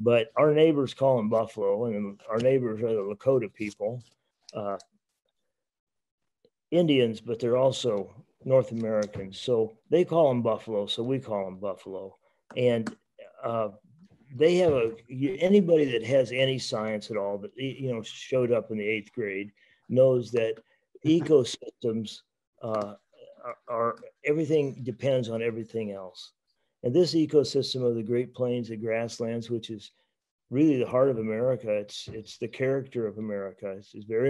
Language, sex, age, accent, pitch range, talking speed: English, male, 40-59, American, 110-135 Hz, 145 wpm